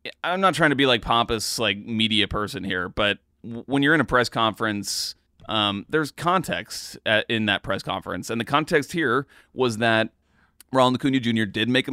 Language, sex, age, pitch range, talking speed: English, male, 30-49, 105-130 Hz, 195 wpm